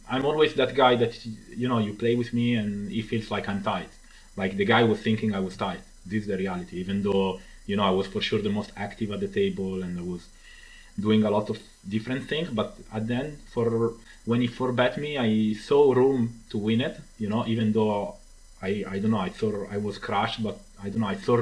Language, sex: English, male